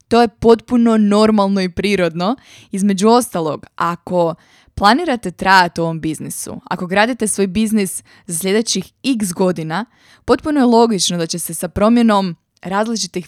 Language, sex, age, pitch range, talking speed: Croatian, female, 20-39, 180-220 Hz, 135 wpm